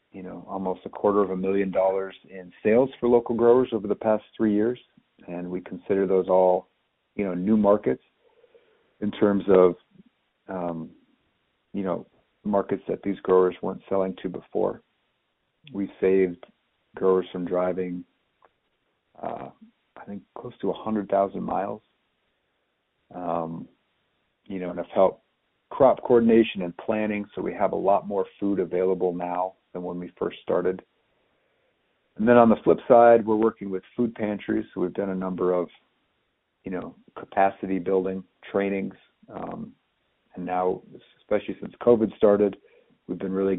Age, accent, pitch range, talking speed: 50-69, American, 90-110 Hz, 150 wpm